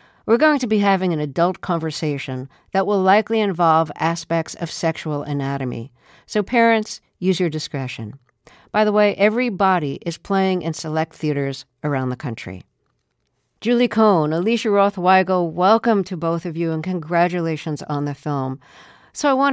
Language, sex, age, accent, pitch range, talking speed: English, female, 50-69, American, 150-195 Hz, 155 wpm